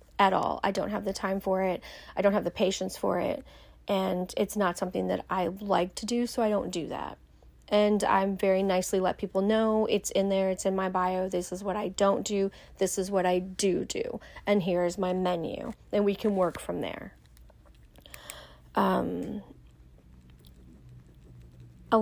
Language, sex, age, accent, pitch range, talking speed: English, female, 30-49, American, 185-215 Hz, 185 wpm